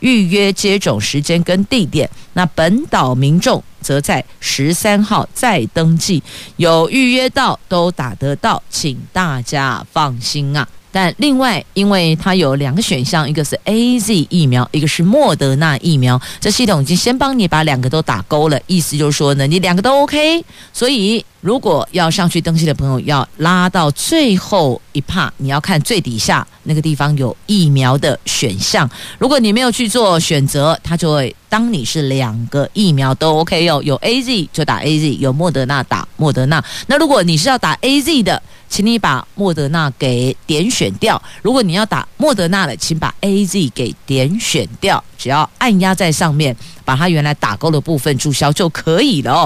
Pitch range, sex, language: 145-195 Hz, female, Chinese